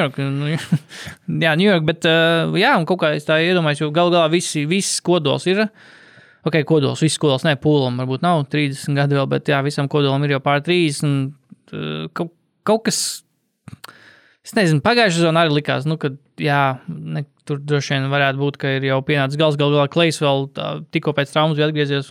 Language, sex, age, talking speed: English, male, 20-39, 180 wpm